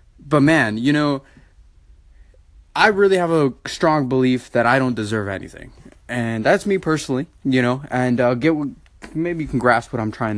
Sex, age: male, 20-39